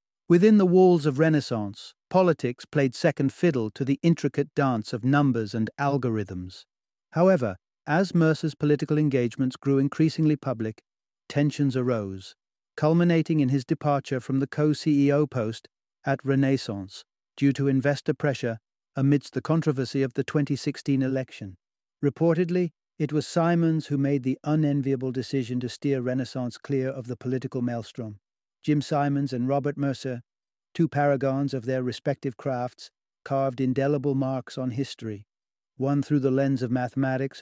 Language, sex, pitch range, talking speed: English, male, 130-150 Hz, 140 wpm